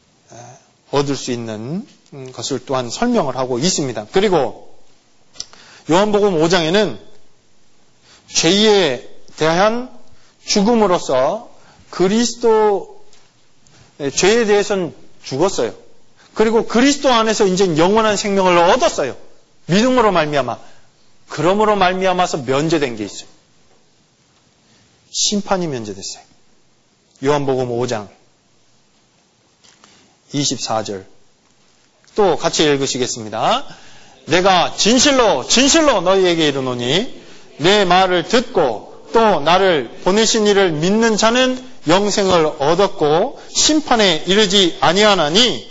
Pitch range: 145-220 Hz